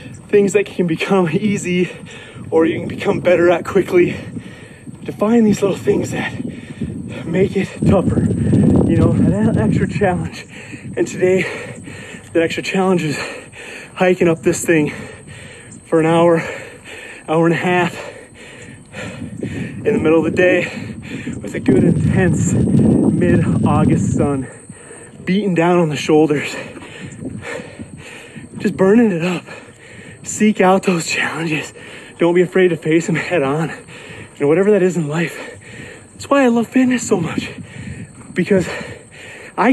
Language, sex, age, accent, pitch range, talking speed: English, male, 30-49, American, 165-200 Hz, 140 wpm